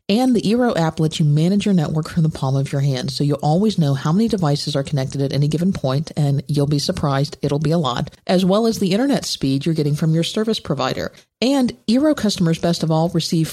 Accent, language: American, English